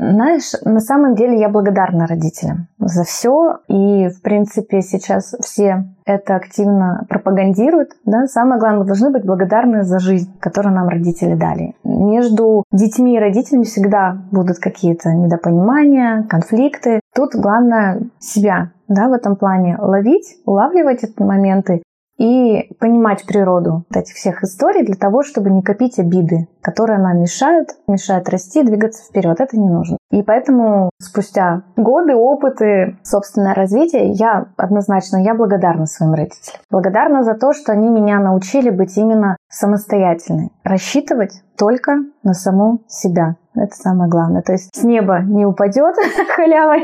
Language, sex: Russian, female